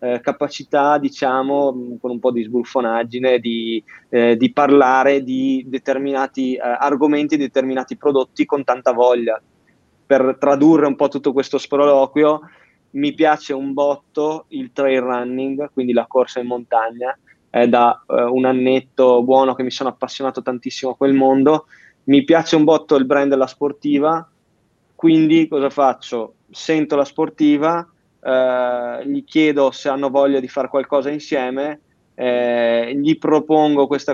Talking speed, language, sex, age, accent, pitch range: 145 wpm, Italian, male, 20-39, native, 125-145 Hz